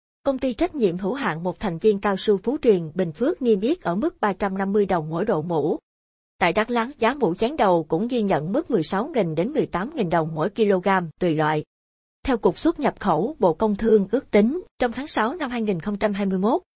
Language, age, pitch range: Vietnamese, 20-39, 185-225 Hz